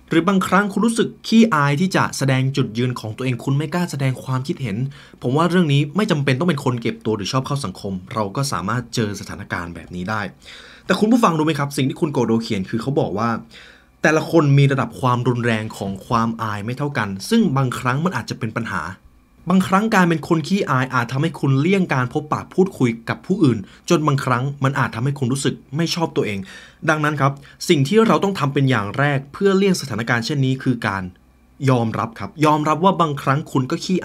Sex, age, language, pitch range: male, 20-39, Thai, 110-155 Hz